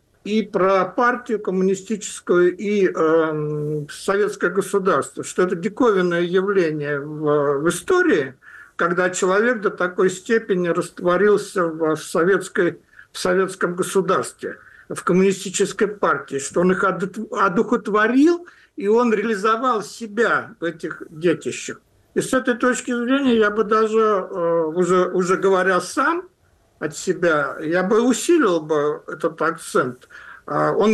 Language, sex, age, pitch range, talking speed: Russian, male, 60-79, 175-225 Hz, 120 wpm